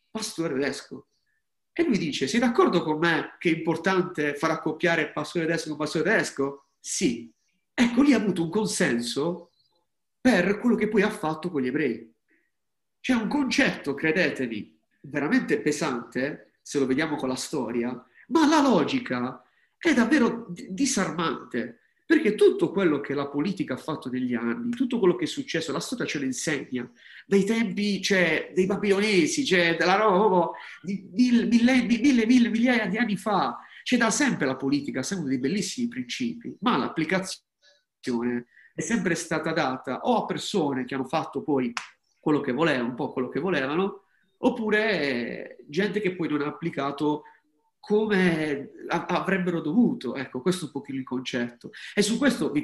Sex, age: male, 40-59